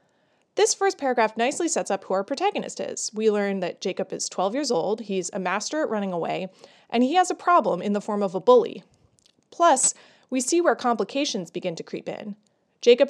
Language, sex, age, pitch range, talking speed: English, female, 20-39, 200-285 Hz, 205 wpm